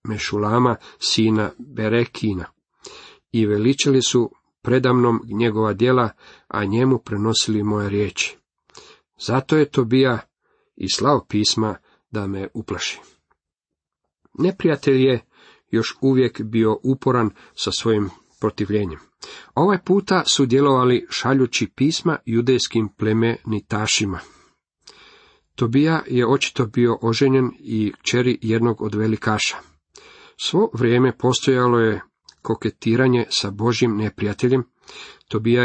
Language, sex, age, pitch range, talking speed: Croatian, male, 40-59, 110-130 Hz, 100 wpm